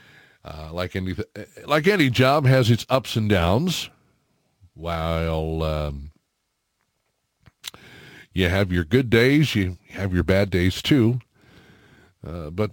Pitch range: 90-120 Hz